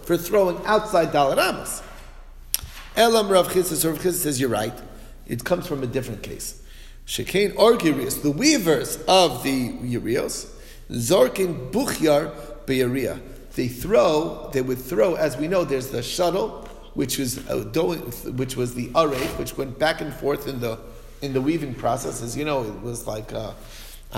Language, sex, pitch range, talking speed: English, male, 125-155 Hz, 155 wpm